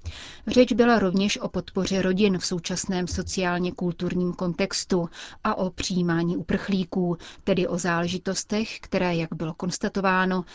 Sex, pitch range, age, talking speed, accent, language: female, 180-205 Hz, 30-49, 120 wpm, native, Czech